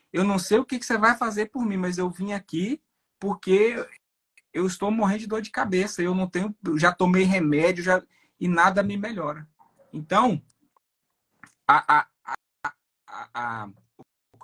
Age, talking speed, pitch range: 20-39, 160 wpm, 140-205 Hz